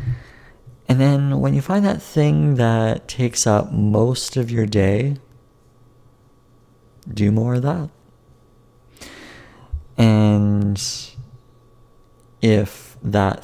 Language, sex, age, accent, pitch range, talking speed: English, male, 30-49, American, 100-125 Hz, 95 wpm